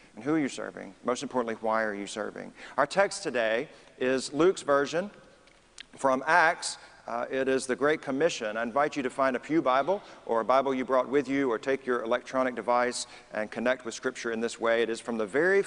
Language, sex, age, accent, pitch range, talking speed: English, male, 40-59, American, 120-175 Hz, 220 wpm